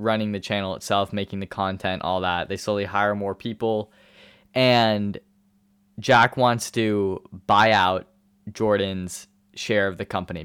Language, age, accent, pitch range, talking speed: English, 10-29, American, 95-110 Hz, 145 wpm